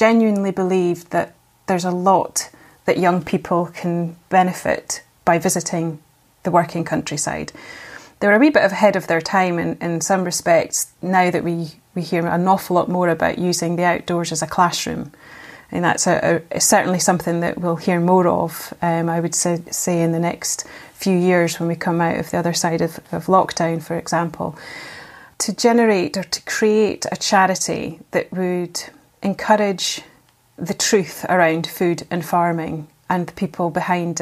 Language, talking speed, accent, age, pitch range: English, 170 wpm, British, 30-49, 170-185 Hz